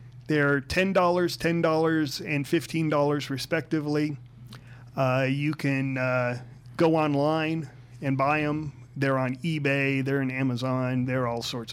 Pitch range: 125-155 Hz